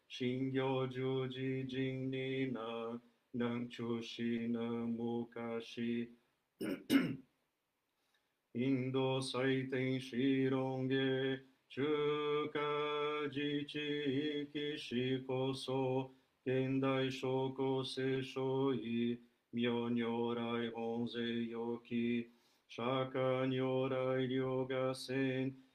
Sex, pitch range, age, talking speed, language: male, 120-135 Hz, 50-69, 70 wpm, Portuguese